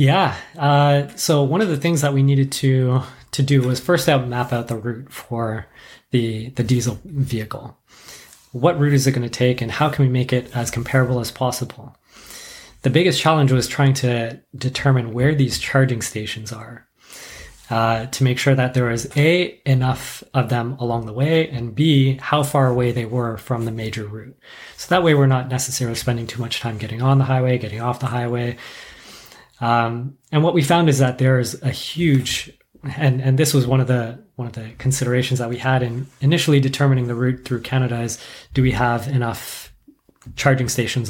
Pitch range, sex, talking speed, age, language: 120-140 Hz, male, 195 wpm, 20-39, English